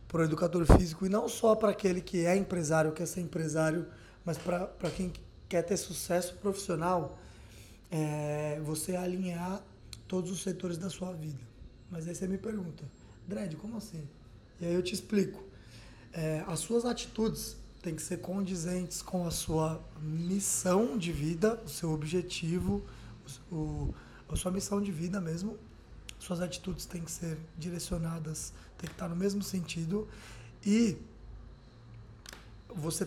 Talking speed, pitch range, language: 150 wpm, 160-190 Hz, English